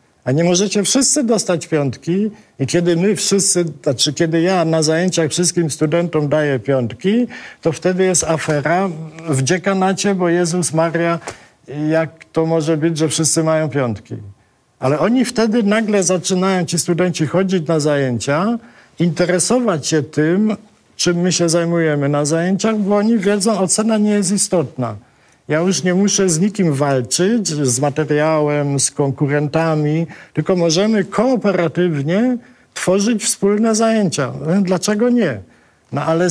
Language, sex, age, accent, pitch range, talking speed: Polish, male, 50-69, native, 145-190 Hz, 135 wpm